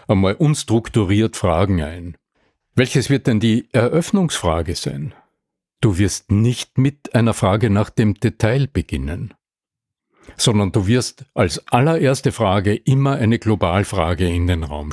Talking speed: 130 wpm